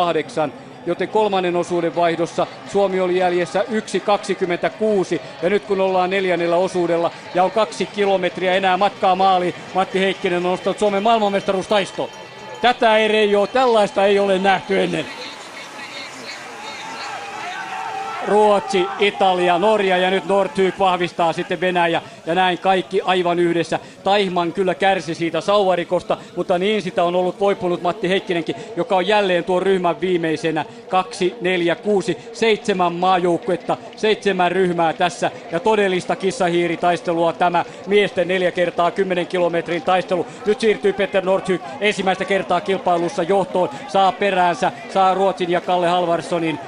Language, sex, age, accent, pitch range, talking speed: Finnish, male, 40-59, native, 175-195 Hz, 130 wpm